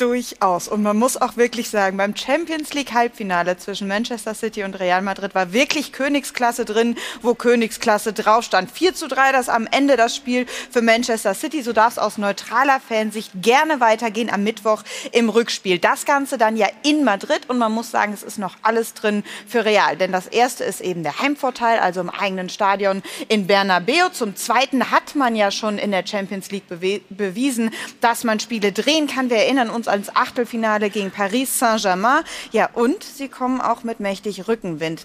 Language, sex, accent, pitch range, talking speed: German, female, German, 205-260 Hz, 185 wpm